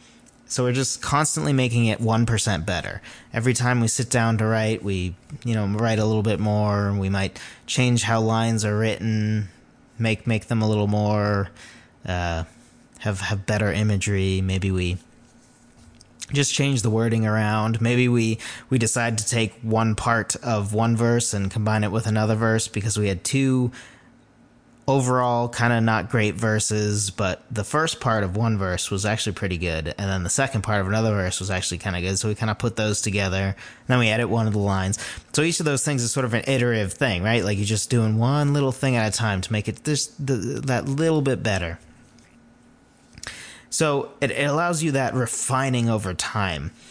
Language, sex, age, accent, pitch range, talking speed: English, male, 20-39, American, 105-120 Hz, 200 wpm